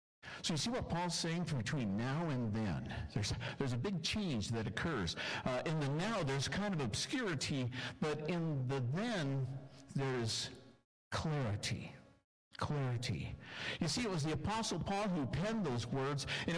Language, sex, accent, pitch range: English, male, American, 120-180 Hz